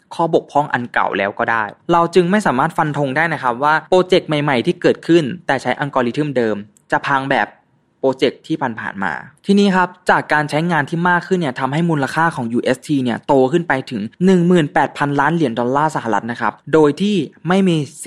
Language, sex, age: Thai, male, 20-39